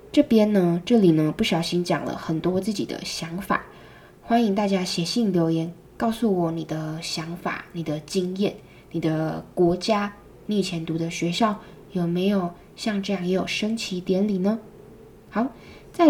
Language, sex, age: Chinese, female, 10-29